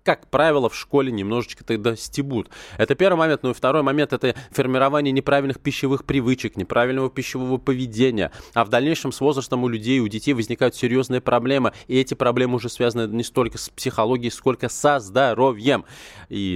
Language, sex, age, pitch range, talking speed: Russian, male, 20-39, 115-150 Hz, 170 wpm